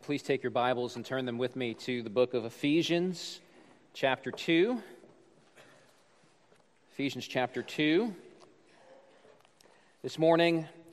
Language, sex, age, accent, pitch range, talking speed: English, male, 40-59, American, 130-165 Hz, 115 wpm